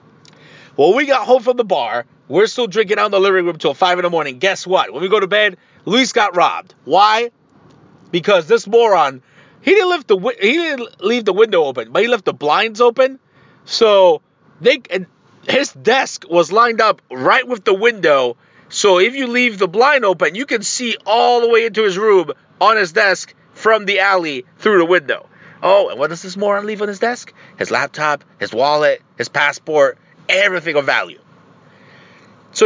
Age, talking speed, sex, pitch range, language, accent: 40-59, 195 wpm, male, 180-260 Hz, English, American